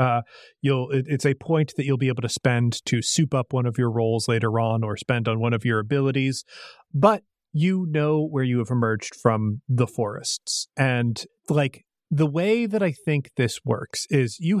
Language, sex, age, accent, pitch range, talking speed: English, male, 30-49, American, 120-155 Hz, 200 wpm